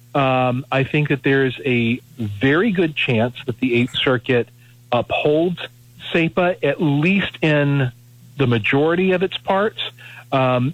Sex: male